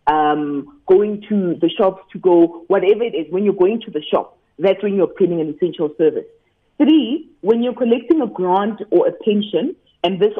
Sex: female